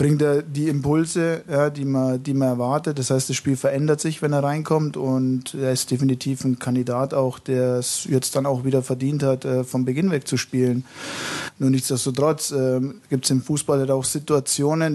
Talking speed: 180 wpm